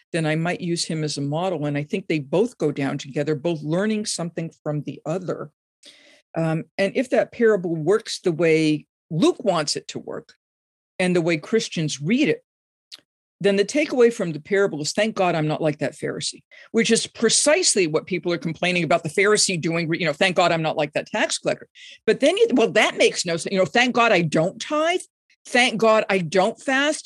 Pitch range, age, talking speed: 165-225 Hz, 50-69, 210 wpm